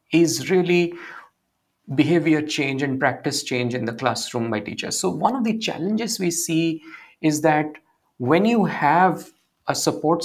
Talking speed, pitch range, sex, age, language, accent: 150 wpm, 130-170 Hz, male, 50-69, English, Indian